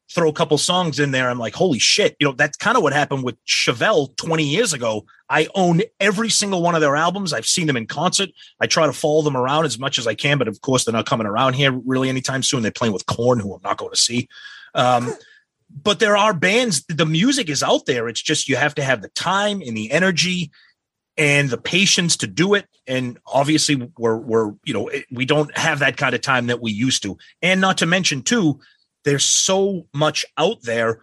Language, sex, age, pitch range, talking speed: English, male, 30-49, 130-165 Hz, 230 wpm